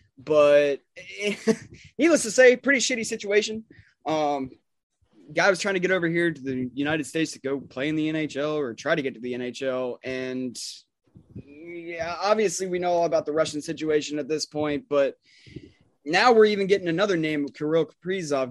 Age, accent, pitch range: 20-39, American, 125-160 Hz